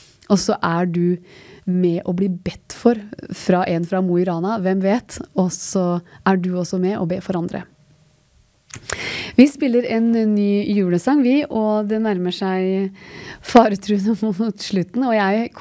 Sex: female